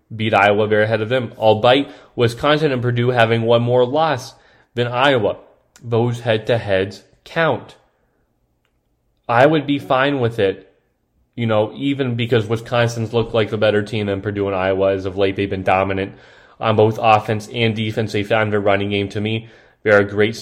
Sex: male